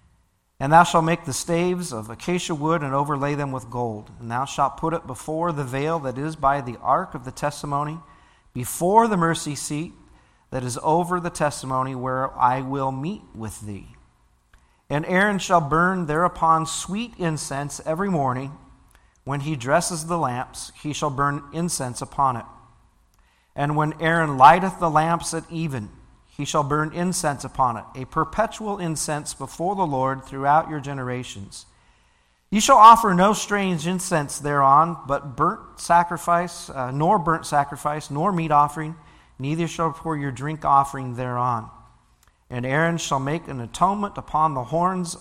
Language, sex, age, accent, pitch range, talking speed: English, male, 40-59, American, 135-170 Hz, 160 wpm